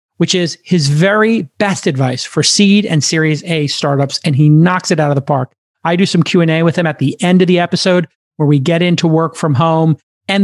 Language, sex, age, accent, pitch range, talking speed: English, male, 40-59, American, 150-185 Hz, 230 wpm